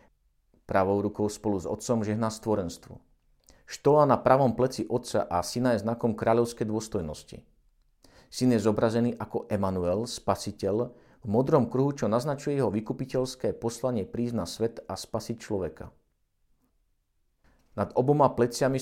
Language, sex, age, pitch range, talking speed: Slovak, male, 50-69, 105-125 Hz, 130 wpm